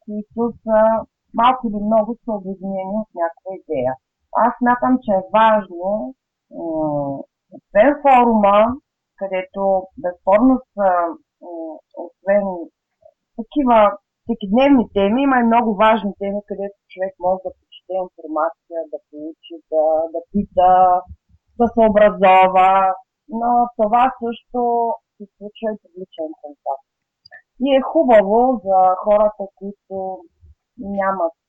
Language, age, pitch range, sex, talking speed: Bulgarian, 30-49, 180-230 Hz, female, 120 wpm